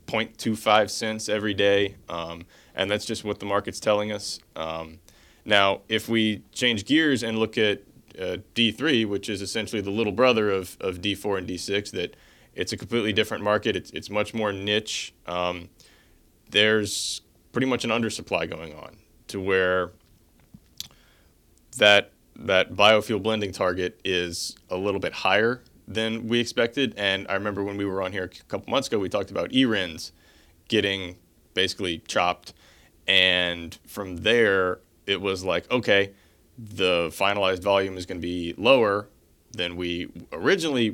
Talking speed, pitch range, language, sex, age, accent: 155 wpm, 90-110 Hz, English, male, 20-39, American